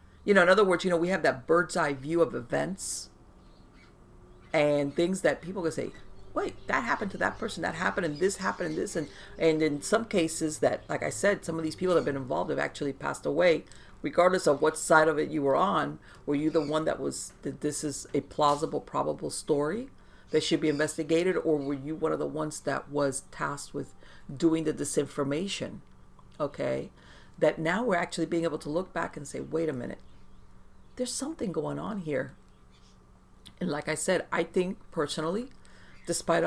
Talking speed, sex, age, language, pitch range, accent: 200 wpm, female, 50-69, English, 145-175 Hz, American